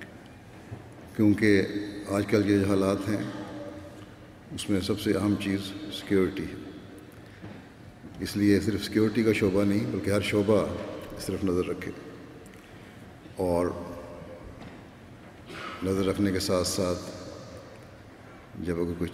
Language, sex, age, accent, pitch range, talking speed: English, male, 50-69, Indian, 95-110 Hz, 105 wpm